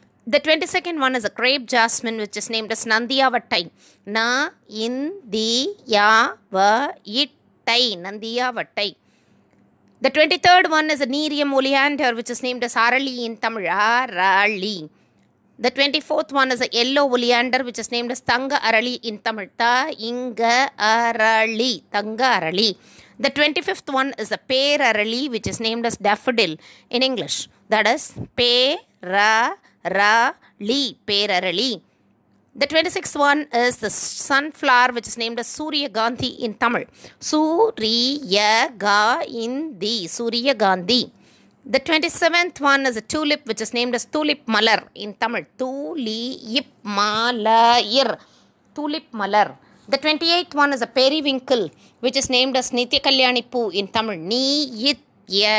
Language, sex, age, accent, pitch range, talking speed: Tamil, female, 20-39, native, 220-275 Hz, 130 wpm